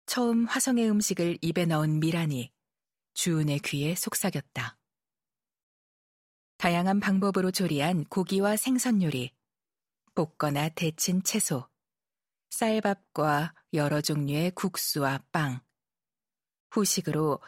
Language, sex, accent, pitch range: Korean, female, native, 150-195 Hz